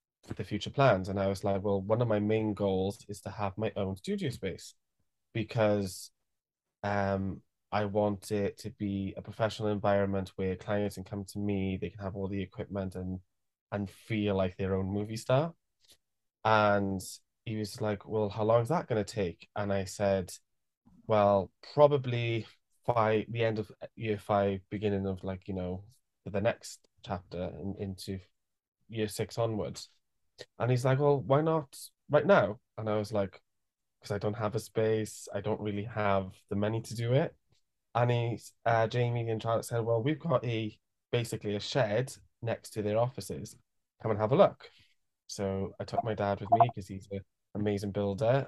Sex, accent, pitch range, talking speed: male, British, 100-110 Hz, 185 wpm